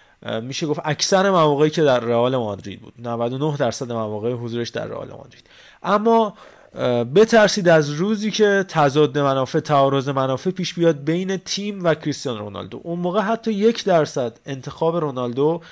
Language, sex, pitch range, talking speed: Persian, male, 135-170 Hz, 150 wpm